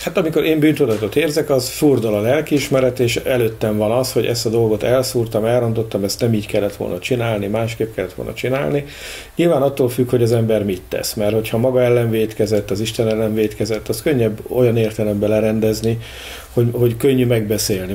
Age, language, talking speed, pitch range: 50-69, English, 185 wpm, 110-125 Hz